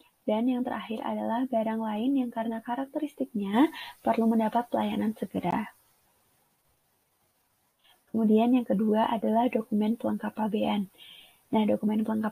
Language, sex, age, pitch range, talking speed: Indonesian, female, 20-39, 220-270 Hz, 110 wpm